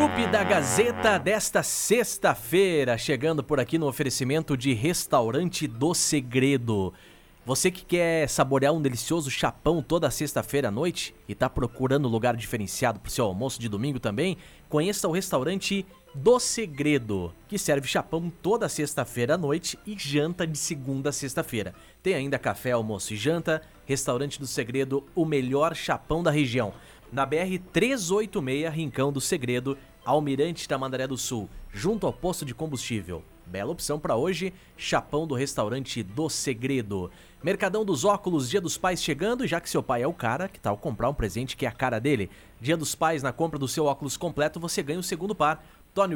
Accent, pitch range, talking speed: Brazilian, 130-170 Hz, 170 wpm